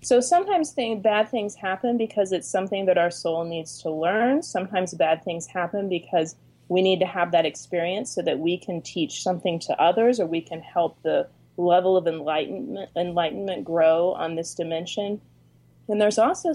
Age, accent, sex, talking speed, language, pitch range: 30-49, American, female, 180 wpm, English, 165-205 Hz